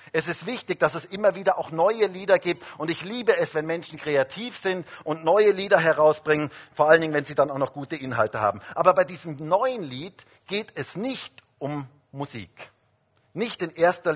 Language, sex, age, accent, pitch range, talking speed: German, male, 50-69, German, 130-200 Hz, 200 wpm